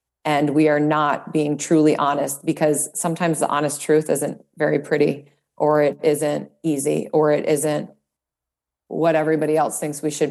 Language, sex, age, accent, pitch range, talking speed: English, female, 30-49, American, 150-170 Hz, 165 wpm